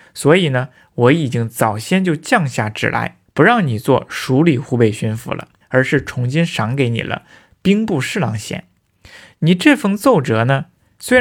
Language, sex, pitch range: Chinese, male, 120-170 Hz